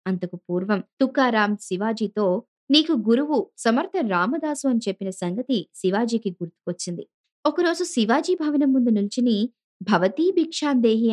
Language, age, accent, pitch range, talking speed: Telugu, 20-39, native, 195-280 Hz, 100 wpm